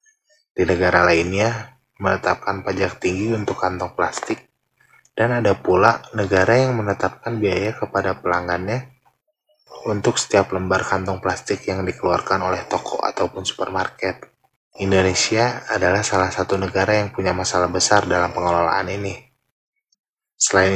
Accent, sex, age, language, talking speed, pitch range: native, male, 20-39, Indonesian, 120 wpm, 95-120 Hz